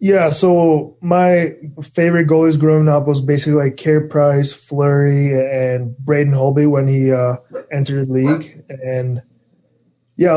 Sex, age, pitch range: male, 20-39, 130-145 Hz